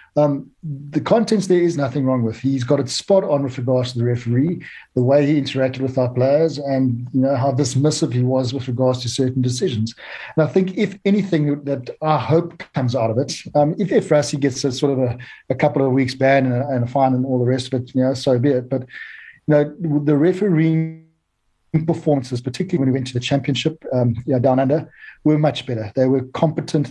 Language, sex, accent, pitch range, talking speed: English, male, South African, 125-150 Hz, 225 wpm